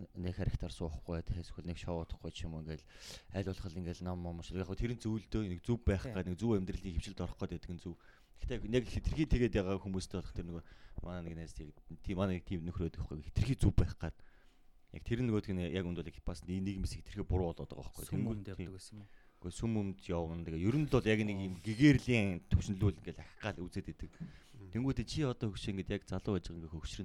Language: Korean